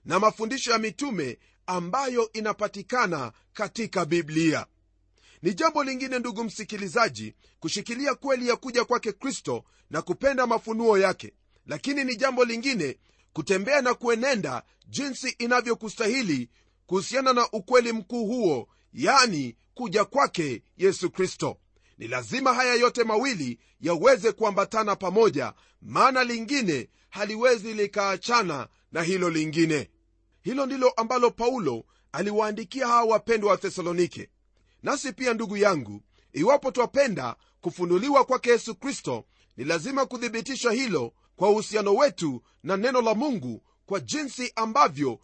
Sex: male